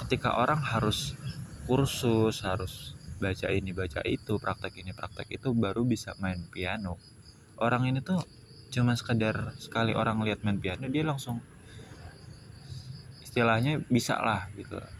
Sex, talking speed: male, 130 wpm